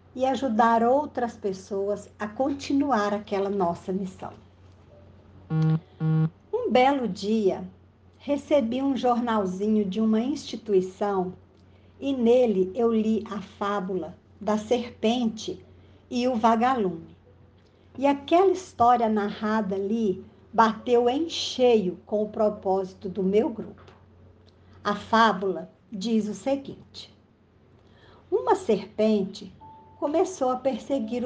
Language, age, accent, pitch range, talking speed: Portuguese, 60-79, Brazilian, 185-240 Hz, 100 wpm